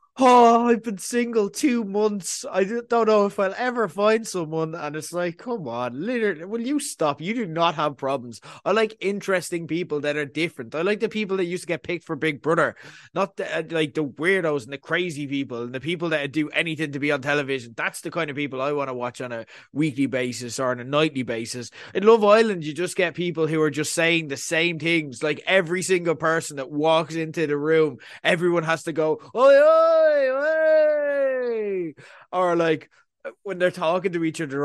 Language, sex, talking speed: English, male, 210 wpm